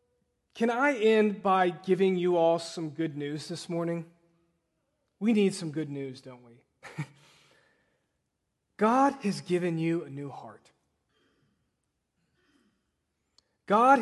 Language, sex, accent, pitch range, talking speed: English, male, American, 150-215 Hz, 115 wpm